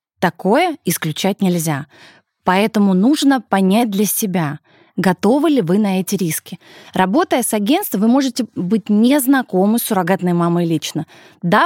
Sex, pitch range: female, 175-245 Hz